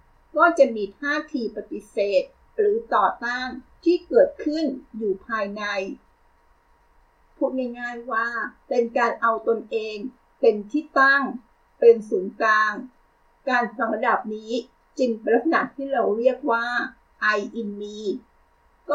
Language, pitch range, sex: Thai, 210-265 Hz, female